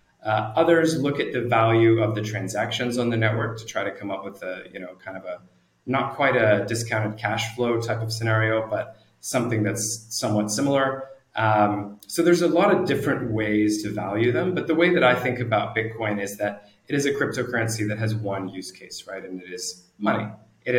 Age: 30-49